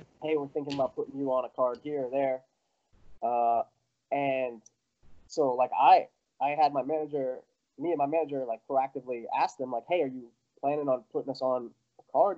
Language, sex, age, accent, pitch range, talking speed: English, male, 20-39, American, 130-155 Hz, 195 wpm